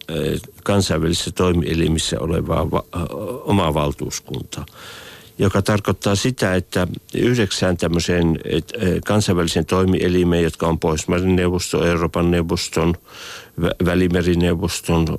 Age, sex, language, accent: 60-79, male, Finnish, native